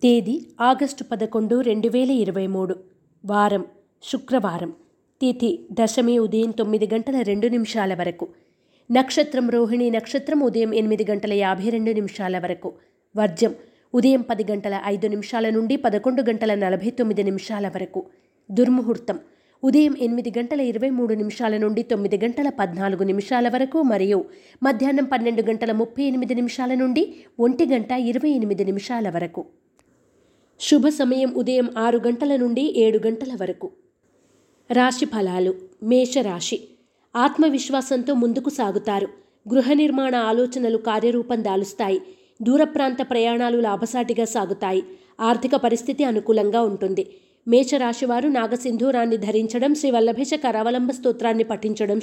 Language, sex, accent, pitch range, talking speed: Telugu, female, native, 215-265 Hz, 120 wpm